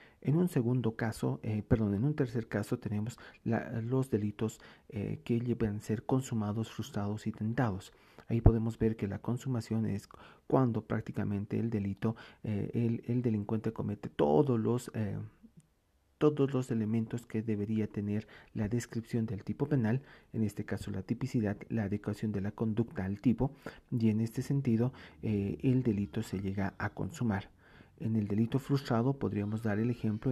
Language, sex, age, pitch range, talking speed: Spanish, male, 40-59, 105-120 Hz, 160 wpm